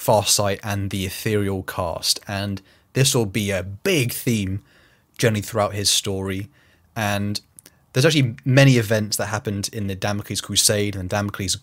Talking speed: 150 wpm